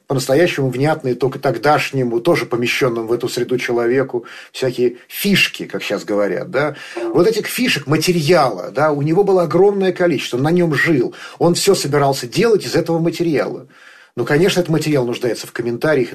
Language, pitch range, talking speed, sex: Russian, 135-180 Hz, 160 wpm, male